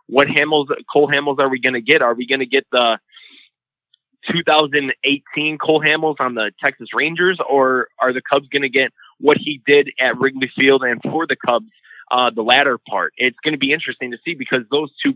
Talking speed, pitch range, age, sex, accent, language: 210 wpm, 125-140 Hz, 20-39, male, American, English